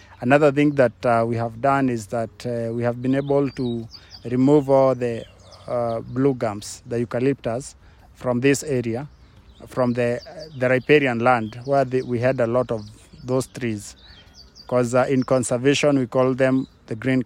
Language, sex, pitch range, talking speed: English, male, 115-135 Hz, 170 wpm